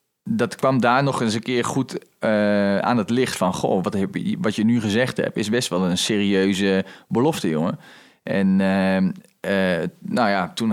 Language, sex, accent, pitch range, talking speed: Dutch, male, Dutch, 95-115 Hz, 190 wpm